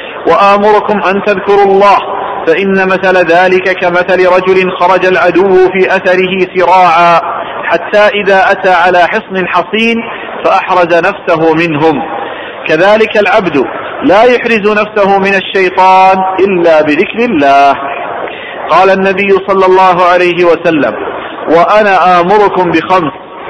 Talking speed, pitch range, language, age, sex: 105 wpm, 170-200 Hz, Arabic, 40-59, male